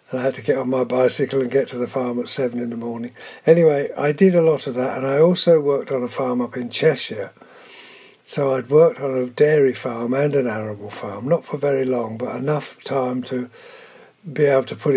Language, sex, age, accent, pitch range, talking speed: English, male, 60-79, British, 120-145 Hz, 235 wpm